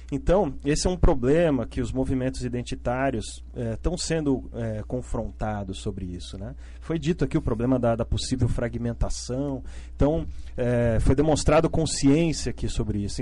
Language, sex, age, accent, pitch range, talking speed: Portuguese, male, 40-59, Brazilian, 100-140 Hz, 155 wpm